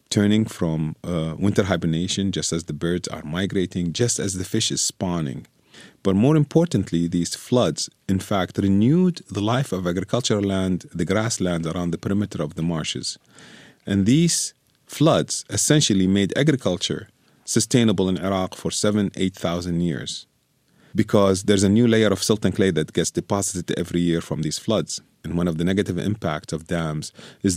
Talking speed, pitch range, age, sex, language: 170 wpm, 85-105 Hz, 40-59, male, English